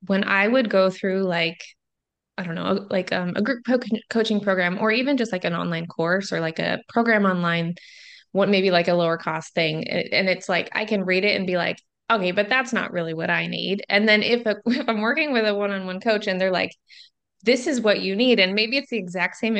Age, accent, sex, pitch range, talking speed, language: 20-39, American, female, 180-230 Hz, 235 wpm, English